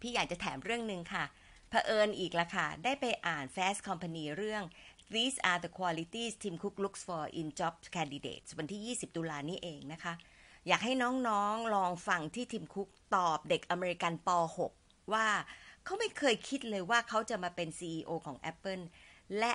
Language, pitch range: Thai, 165-220 Hz